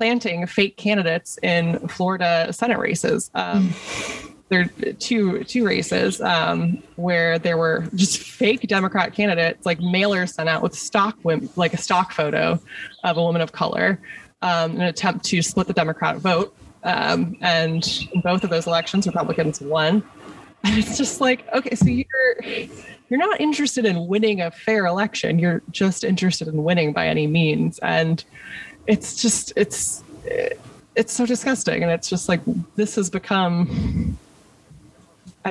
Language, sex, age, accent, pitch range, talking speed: English, female, 20-39, American, 165-220 Hz, 155 wpm